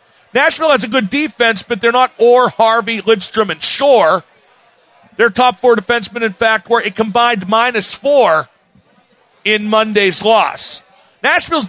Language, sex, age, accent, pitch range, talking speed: English, male, 50-69, American, 215-260 Hz, 150 wpm